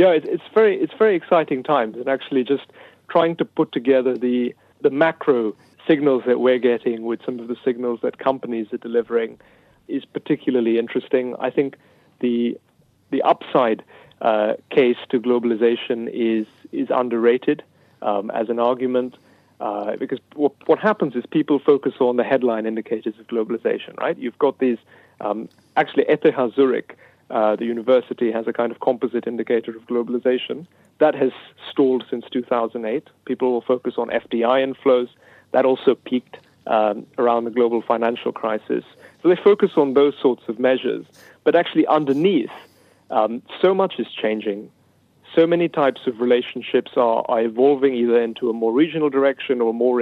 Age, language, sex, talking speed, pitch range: 40-59, English, male, 160 wpm, 115-140 Hz